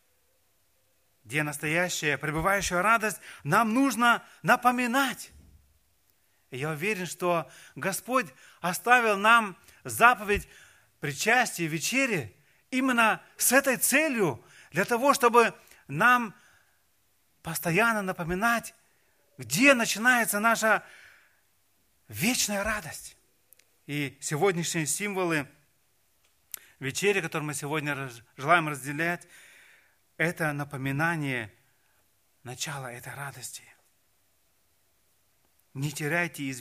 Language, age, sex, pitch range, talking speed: Russian, 30-49, male, 130-215 Hz, 80 wpm